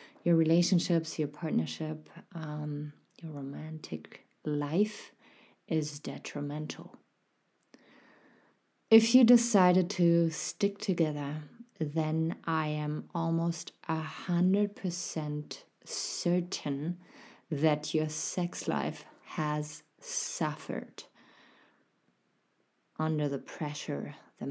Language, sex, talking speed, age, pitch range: English, female, 80 wpm, 30-49, 150-170 Hz